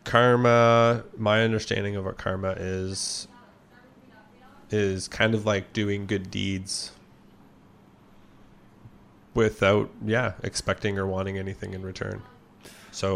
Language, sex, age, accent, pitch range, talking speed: English, male, 20-39, American, 95-110 Hz, 105 wpm